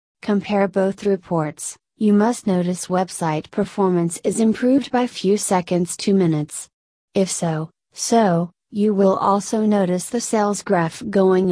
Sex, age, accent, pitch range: female, 30-49, American, 175-205 Hz